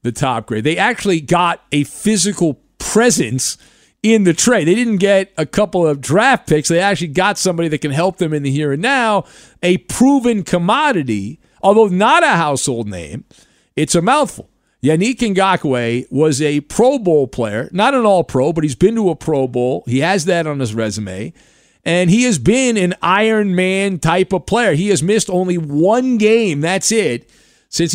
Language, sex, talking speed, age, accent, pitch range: English, male, 185 wpm, 50-69, American, 140-195 Hz